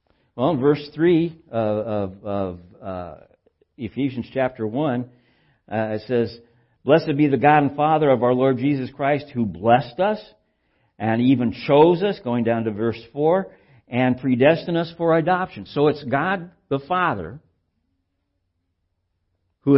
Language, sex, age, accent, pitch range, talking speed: English, male, 60-79, American, 95-150 Hz, 145 wpm